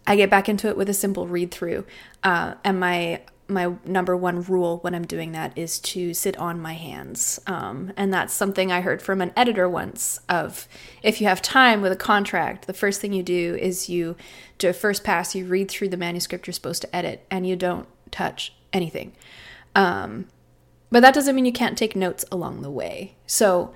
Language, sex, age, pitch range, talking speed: English, female, 20-39, 170-200 Hz, 205 wpm